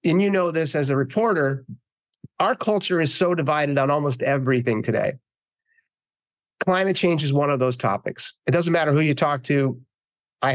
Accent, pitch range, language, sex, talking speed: American, 130-170 Hz, English, male, 175 wpm